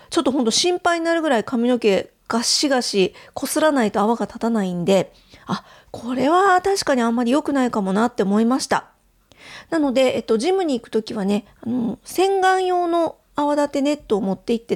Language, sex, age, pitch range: Japanese, female, 40-59, 220-290 Hz